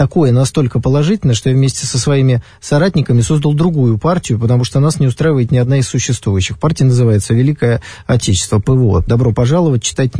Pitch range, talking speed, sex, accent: 125-175 Hz, 170 wpm, male, native